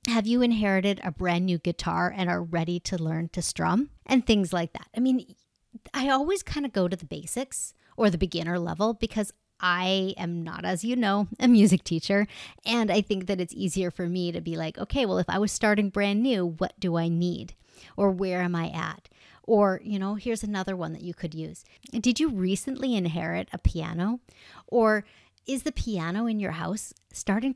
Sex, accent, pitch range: female, American, 180-235 Hz